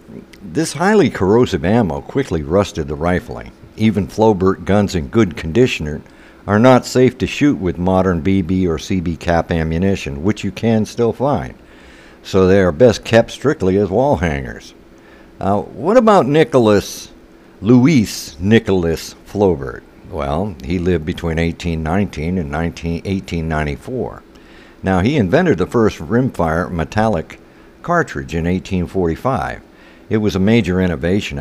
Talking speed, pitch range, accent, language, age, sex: 130 wpm, 80-100 Hz, American, English, 60-79, male